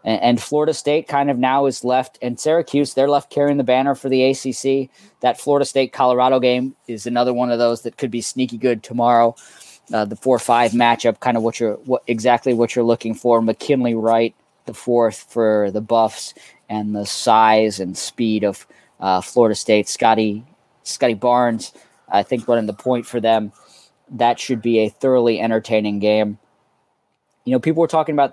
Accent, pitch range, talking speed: American, 115-130 Hz, 185 wpm